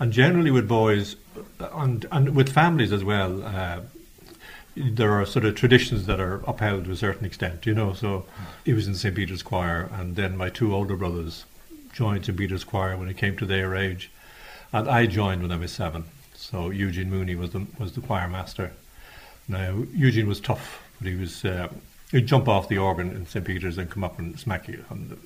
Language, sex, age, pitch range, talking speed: English, male, 60-79, 95-115 Hz, 210 wpm